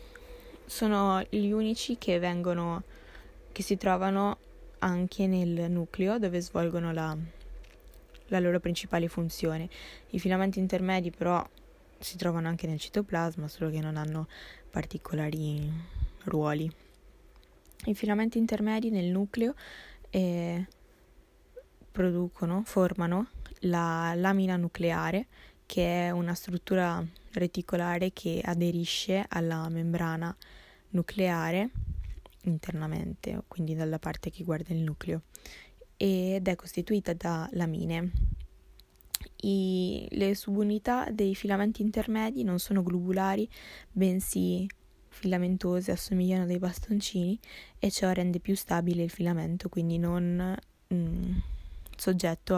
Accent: native